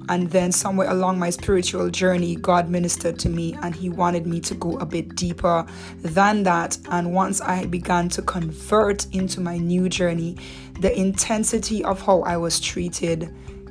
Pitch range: 170-190 Hz